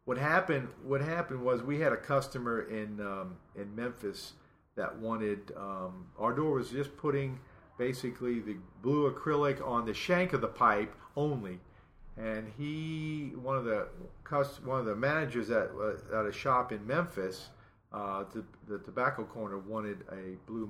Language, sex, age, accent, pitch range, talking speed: English, male, 50-69, American, 105-130 Hz, 165 wpm